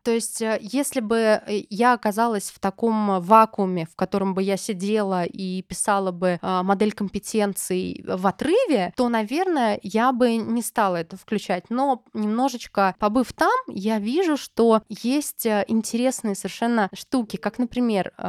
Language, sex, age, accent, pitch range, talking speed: Russian, female, 20-39, native, 190-235 Hz, 140 wpm